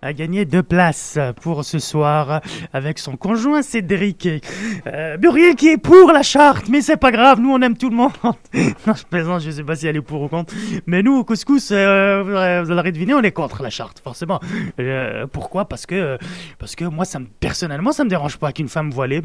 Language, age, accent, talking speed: French, 20-39, French, 230 wpm